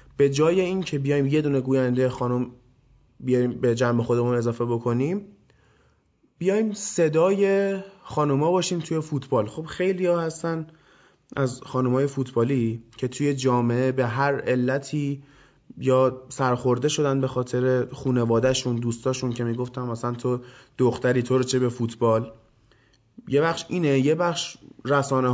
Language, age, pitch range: Persian, 20-39, 125-150 Hz